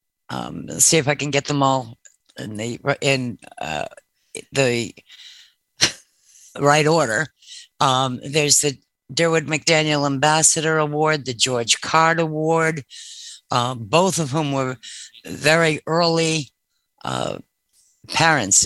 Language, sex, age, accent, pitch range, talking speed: English, female, 60-79, American, 120-145 Hz, 115 wpm